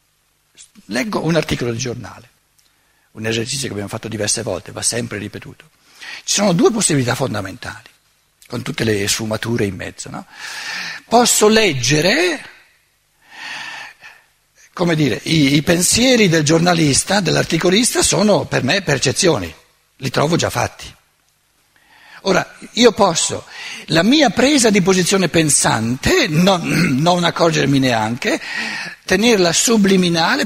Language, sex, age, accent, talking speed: Italian, male, 60-79, native, 115 wpm